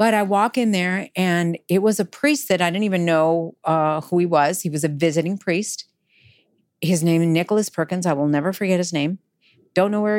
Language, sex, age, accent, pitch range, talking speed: English, female, 40-59, American, 160-195 Hz, 225 wpm